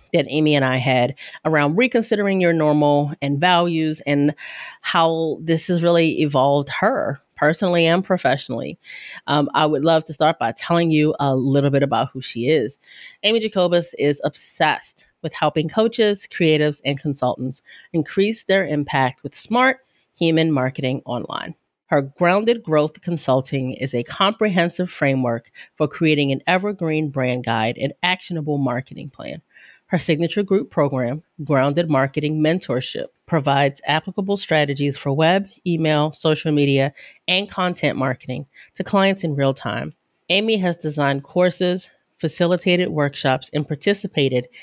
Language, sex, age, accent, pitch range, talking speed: English, female, 30-49, American, 140-180 Hz, 140 wpm